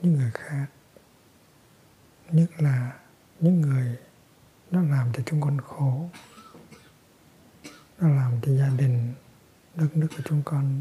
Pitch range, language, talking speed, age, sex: 125-150 Hz, Vietnamese, 130 wpm, 60-79, male